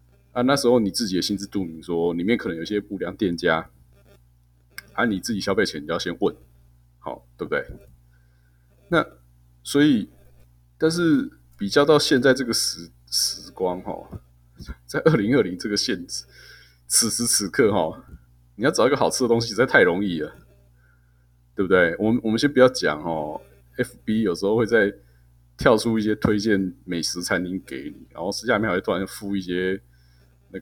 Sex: male